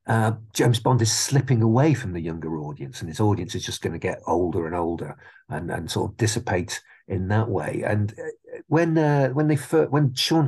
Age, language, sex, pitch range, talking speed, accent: 50-69, English, male, 100-125 Hz, 210 wpm, British